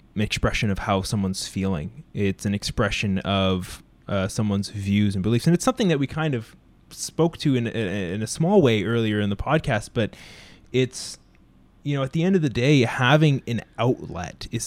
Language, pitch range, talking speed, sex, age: English, 100-125 Hz, 190 wpm, male, 20-39